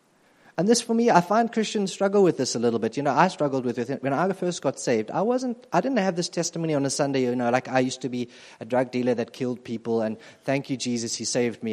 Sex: male